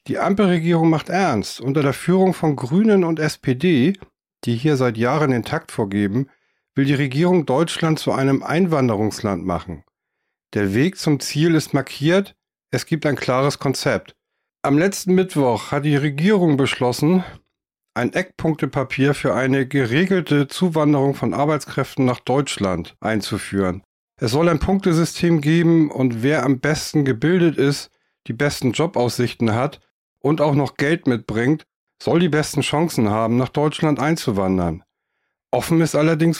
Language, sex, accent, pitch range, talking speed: German, male, German, 130-165 Hz, 140 wpm